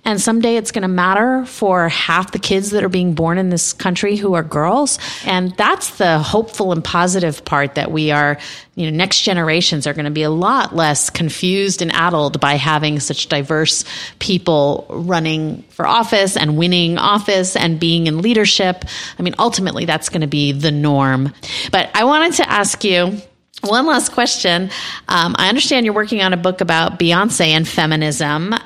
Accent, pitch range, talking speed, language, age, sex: American, 155-205 Hz, 185 wpm, English, 30-49, female